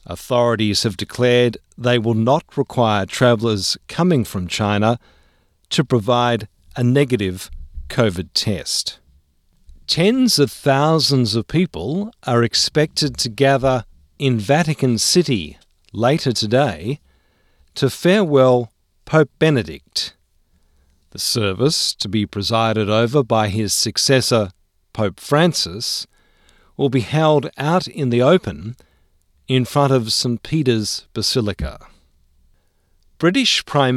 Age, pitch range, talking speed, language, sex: 50-69, 95-140 Hz, 110 wpm, English, male